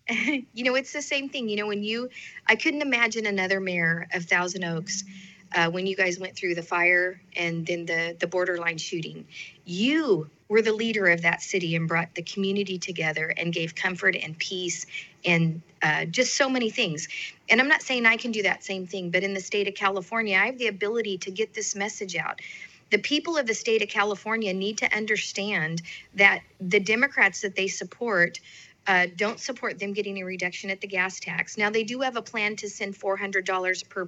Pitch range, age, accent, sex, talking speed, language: 175-220 Hz, 40-59, American, female, 205 wpm, English